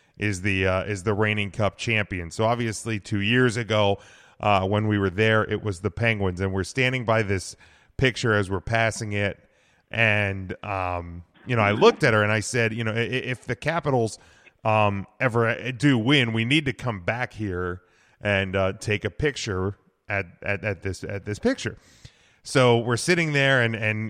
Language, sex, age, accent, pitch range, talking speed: English, male, 30-49, American, 100-125 Hz, 190 wpm